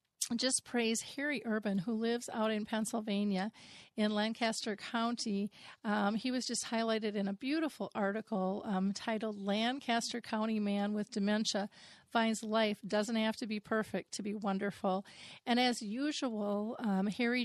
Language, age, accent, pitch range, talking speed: English, 40-59, American, 200-225 Hz, 150 wpm